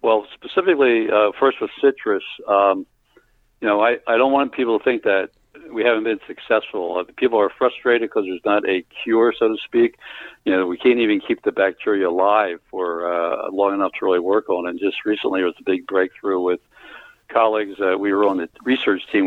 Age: 60-79